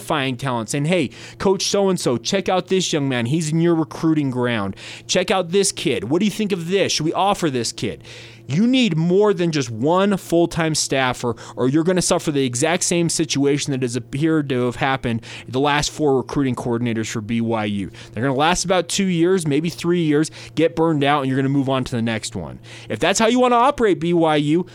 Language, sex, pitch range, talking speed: English, male, 125-175 Hz, 220 wpm